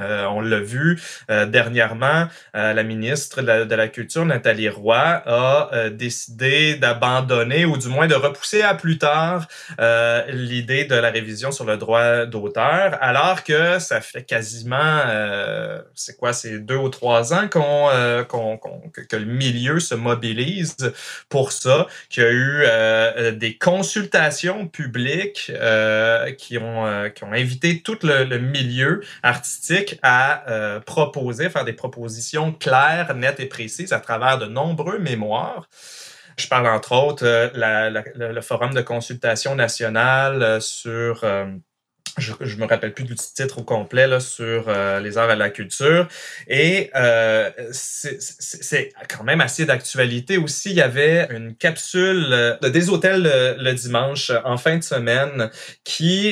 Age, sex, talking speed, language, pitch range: 20-39, male, 165 wpm, French, 115-150 Hz